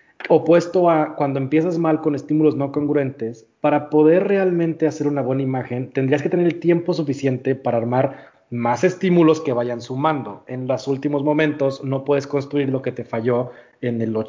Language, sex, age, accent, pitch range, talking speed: Spanish, male, 30-49, Mexican, 120-155 Hz, 175 wpm